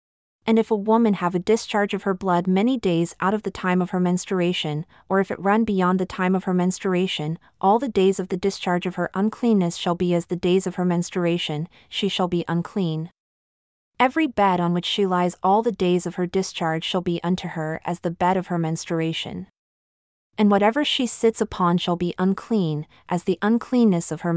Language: English